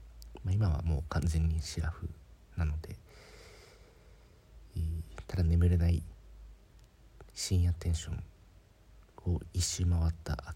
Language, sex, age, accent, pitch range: Japanese, male, 40-59, native, 80-100 Hz